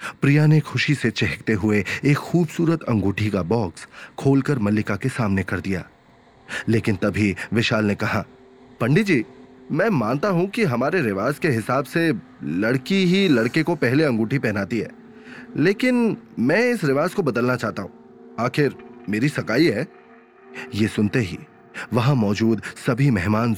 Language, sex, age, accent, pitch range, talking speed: Hindi, male, 30-49, native, 105-160 Hz, 155 wpm